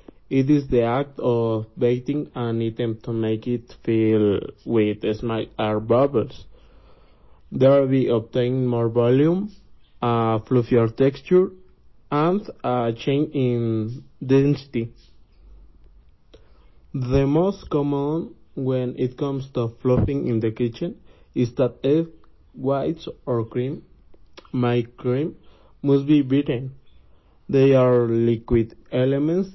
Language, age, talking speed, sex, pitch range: English, 50-69, 115 wpm, male, 115-140 Hz